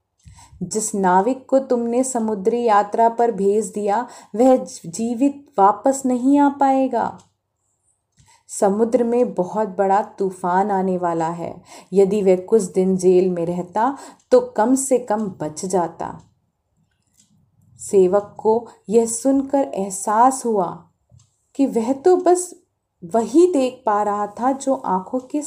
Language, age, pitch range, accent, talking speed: Hindi, 30-49, 185-255 Hz, native, 125 wpm